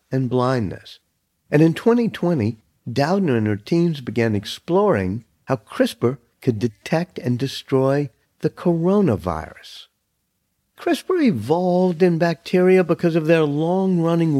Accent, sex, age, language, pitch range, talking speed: American, male, 50-69, English, 105-170 Hz, 115 wpm